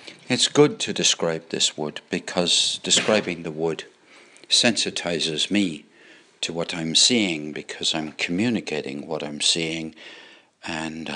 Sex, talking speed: male, 125 wpm